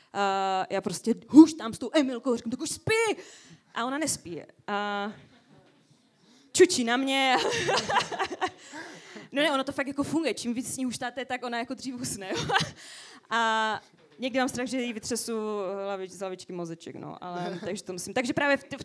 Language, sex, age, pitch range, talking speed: English, female, 20-39, 200-260 Hz, 165 wpm